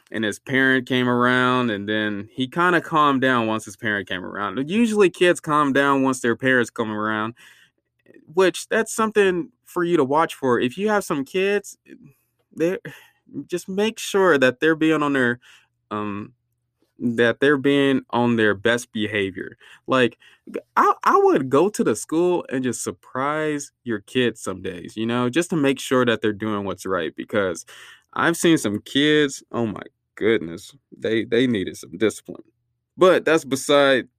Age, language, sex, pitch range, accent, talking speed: 20-39, English, male, 115-150 Hz, American, 175 wpm